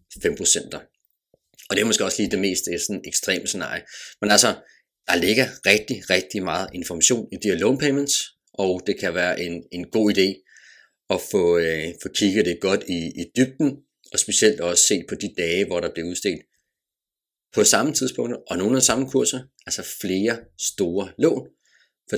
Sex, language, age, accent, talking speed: male, Danish, 30-49, native, 185 wpm